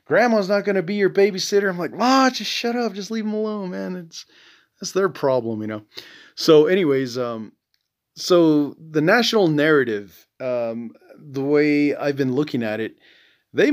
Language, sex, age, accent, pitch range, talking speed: English, male, 30-49, American, 120-165 Hz, 175 wpm